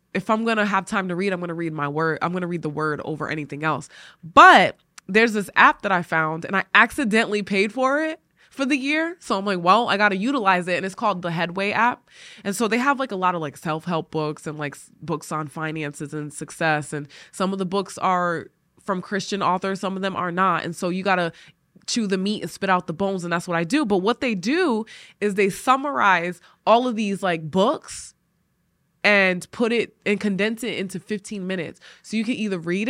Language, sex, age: English, female, 20-39